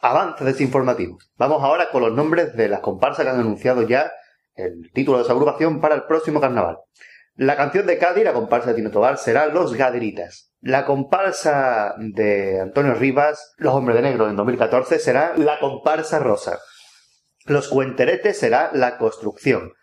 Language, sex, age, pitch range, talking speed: Spanish, male, 30-49, 125-165 Hz, 165 wpm